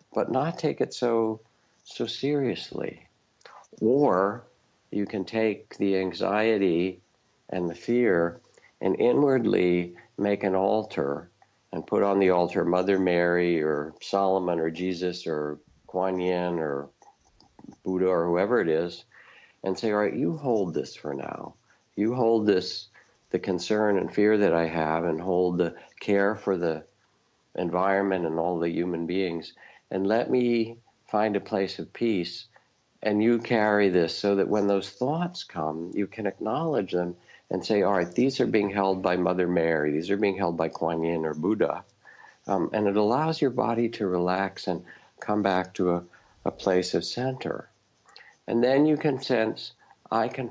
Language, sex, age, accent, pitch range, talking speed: English, male, 60-79, American, 90-110 Hz, 165 wpm